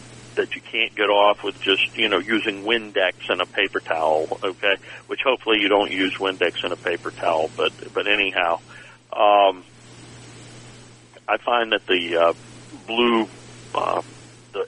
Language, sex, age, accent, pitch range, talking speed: English, male, 50-69, American, 95-125 Hz, 155 wpm